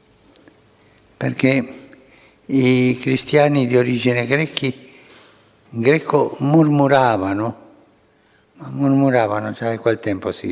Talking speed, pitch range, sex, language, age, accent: 90 wpm, 110-135 Hz, male, Italian, 60-79, native